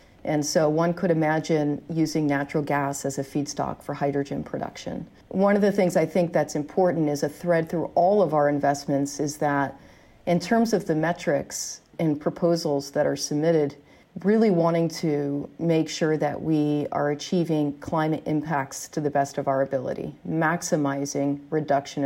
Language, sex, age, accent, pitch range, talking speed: English, female, 40-59, American, 145-175 Hz, 165 wpm